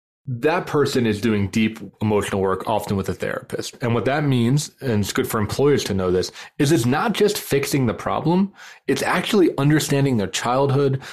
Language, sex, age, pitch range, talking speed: English, male, 20-39, 105-135 Hz, 190 wpm